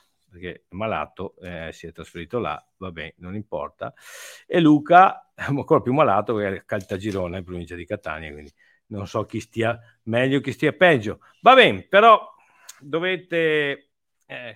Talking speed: 155 wpm